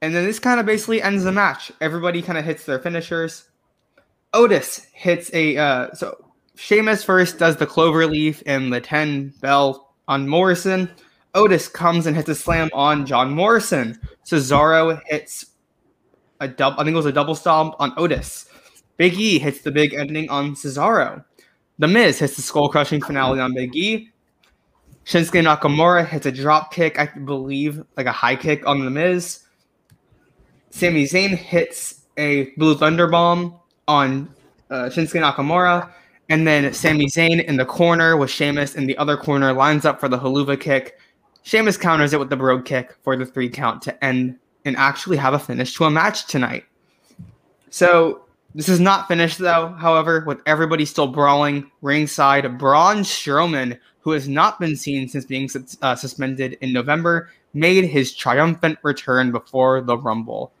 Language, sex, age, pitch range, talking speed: English, male, 20-39, 140-170 Hz, 165 wpm